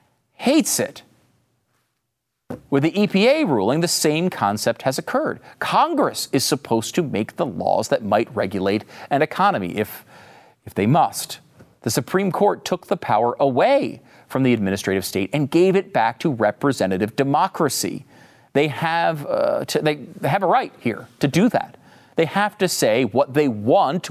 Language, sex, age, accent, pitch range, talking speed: English, male, 40-59, American, 125-180 Hz, 155 wpm